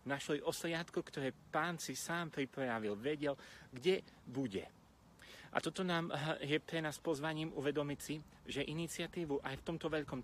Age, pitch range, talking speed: 30-49, 125-155 Hz, 145 wpm